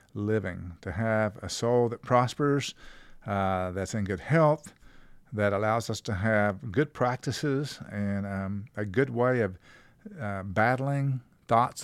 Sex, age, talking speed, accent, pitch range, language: male, 50-69, 140 wpm, American, 105-130 Hz, English